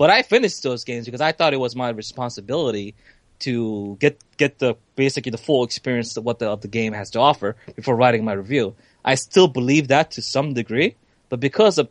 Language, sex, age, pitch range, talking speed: English, male, 20-39, 115-145 Hz, 215 wpm